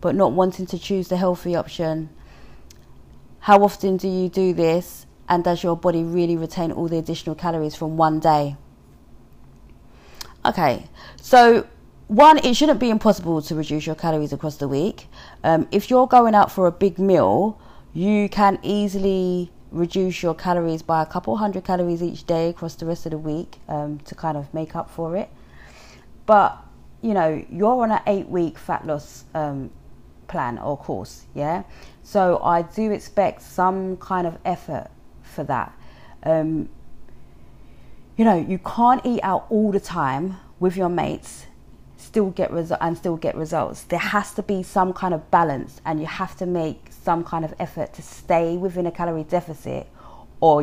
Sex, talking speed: female, 175 wpm